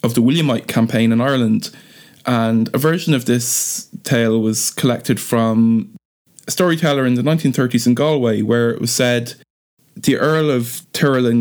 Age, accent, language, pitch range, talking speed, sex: 20-39, Irish, English, 115-140 Hz, 160 wpm, male